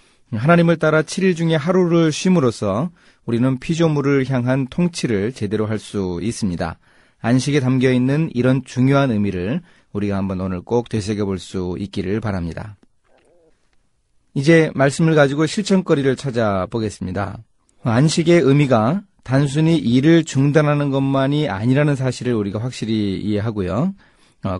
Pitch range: 105-145 Hz